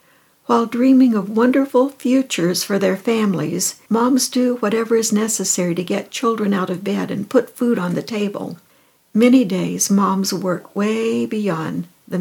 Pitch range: 185-230 Hz